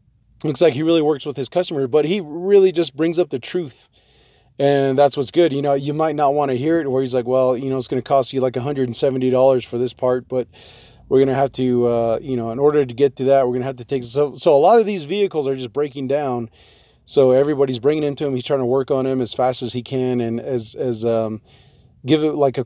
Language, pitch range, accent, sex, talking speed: English, 125-150 Hz, American, male, 265 wpm